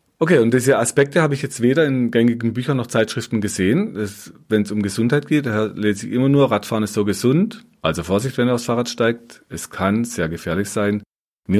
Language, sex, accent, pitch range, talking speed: German, male, German, 95-115 Hz, 210 wpm